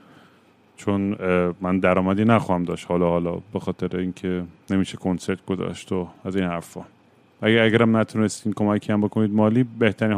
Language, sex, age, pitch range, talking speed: Persian, male, 30-49, 95-115 Hz, 160 wpm